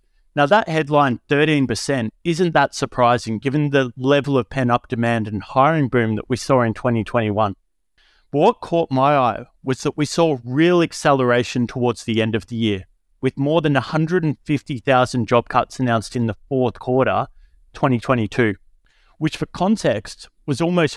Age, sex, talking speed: 30-49, male, 155 wpm